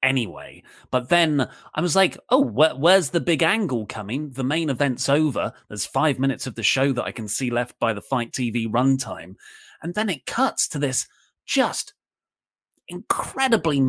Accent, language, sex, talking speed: British, English, male, 175 wpm